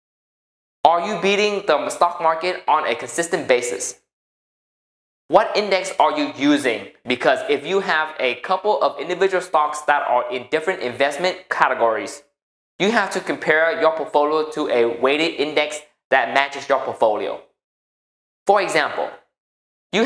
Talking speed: 140 wpm